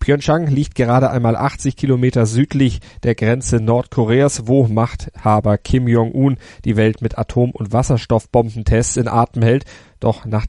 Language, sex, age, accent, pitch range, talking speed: German, male, 40-59, German, 110-130 Hz, 145 wpm